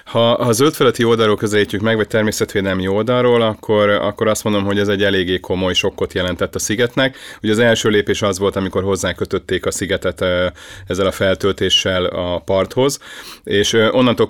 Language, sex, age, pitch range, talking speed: Hungarian, male, 30-49, 95-105 Hz, 165 wpm